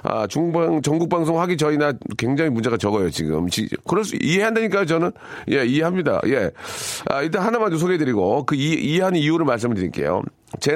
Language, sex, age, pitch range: Korean, male, 40-59, 110-160 Hz